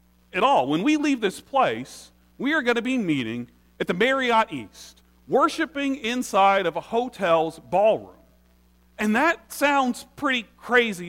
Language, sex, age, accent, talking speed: English, male, 40-59, American, 150 wpm